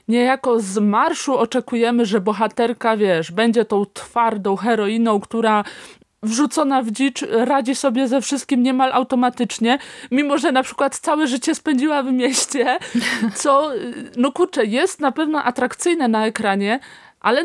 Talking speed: 140 wpm